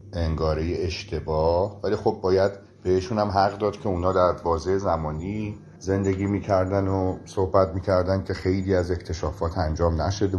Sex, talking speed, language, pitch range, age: male, 145 wpm, Persian, 90-105 Hz, 40-59